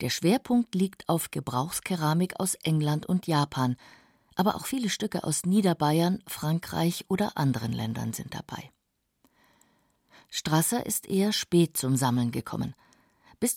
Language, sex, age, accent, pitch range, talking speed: German, female, 50-69, German, 145-195 Hz, 130 wpm